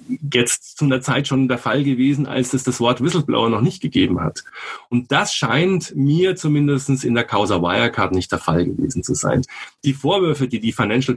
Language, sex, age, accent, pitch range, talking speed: German, male, 30-49, German, 115-150 Hz, 200 wpm